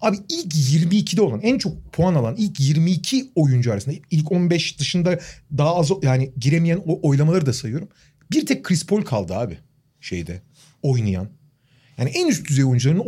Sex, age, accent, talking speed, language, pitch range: male, 40-59, native, 165 wpm, Turkish, 135-200 Hz